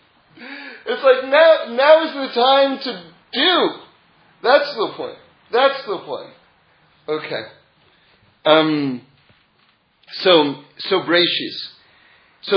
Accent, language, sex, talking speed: American, English, male, 100 wpm